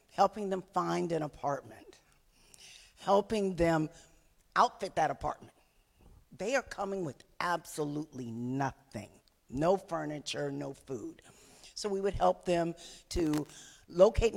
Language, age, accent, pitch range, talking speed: English, 50-69, American, 135-190 Hz, 115 wpm